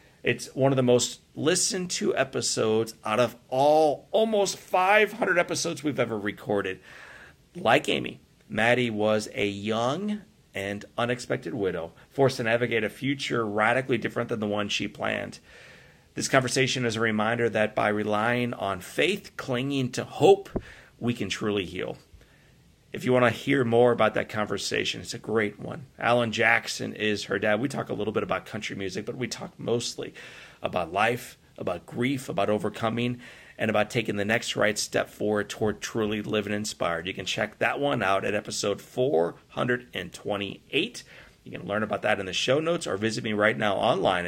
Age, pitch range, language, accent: 40-59, 105-130 Hz, English, American